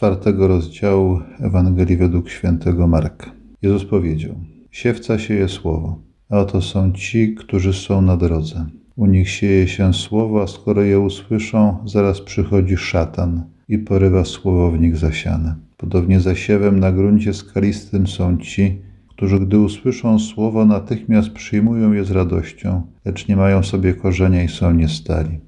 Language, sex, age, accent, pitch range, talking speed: Polish, male, 40-59, native, 90-100 Hz, 140 wpm